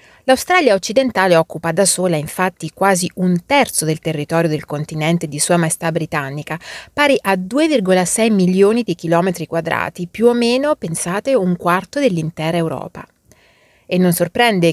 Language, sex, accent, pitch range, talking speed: Italian, female, native, 160-205 Hz, 145 wpm